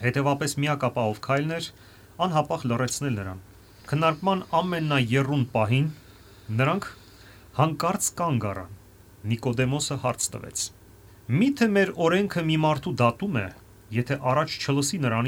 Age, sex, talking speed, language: 30-49, male, 50 wpm, English